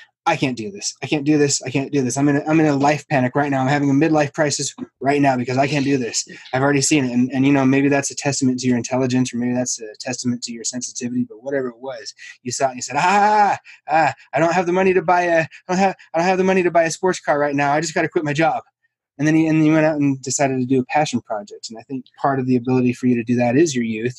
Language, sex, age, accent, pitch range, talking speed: English, male, 20-39, American, 120-140 Hz, 320 wpm